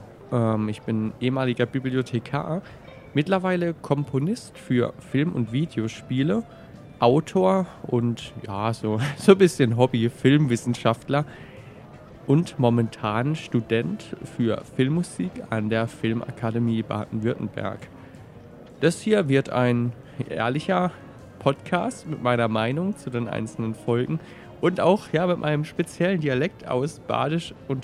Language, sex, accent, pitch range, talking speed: German, male, German, 115-145 Hz, 105 wpm